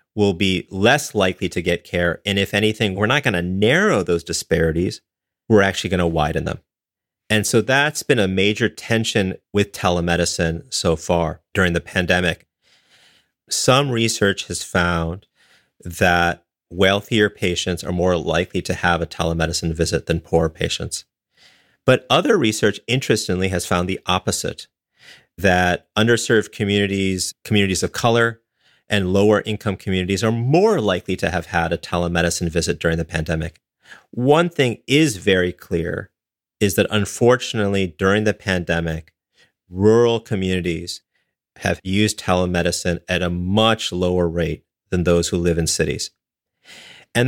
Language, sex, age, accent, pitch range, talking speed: English, male, 30-49, American, 85-105 Hz, 140 wpm